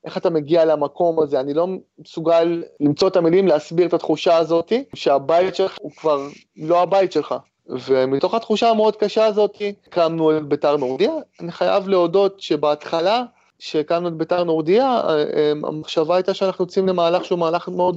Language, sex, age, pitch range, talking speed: Hebrew, male, 30-49, 145-180 Hz, 155 wpm